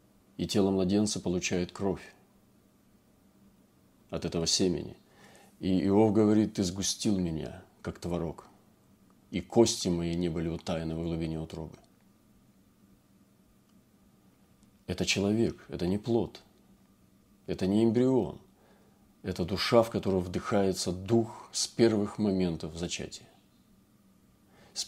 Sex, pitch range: male, 90-110 Hz